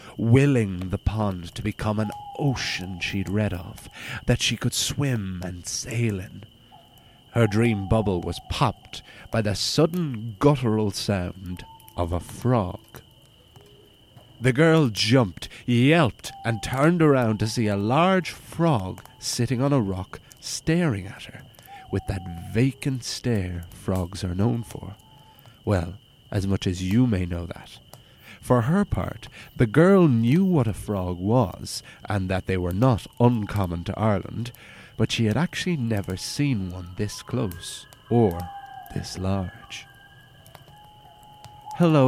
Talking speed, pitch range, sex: 135 wpm, 100-135 Hz, male